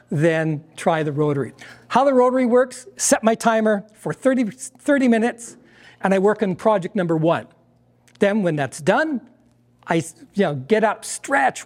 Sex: male